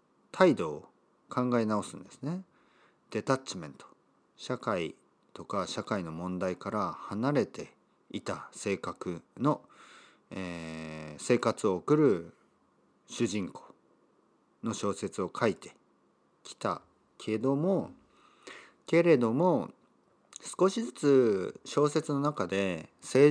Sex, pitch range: male, 95-150 Hz